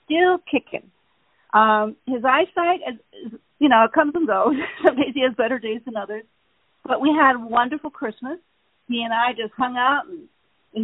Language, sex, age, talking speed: English, female, 50-69, 185 wpm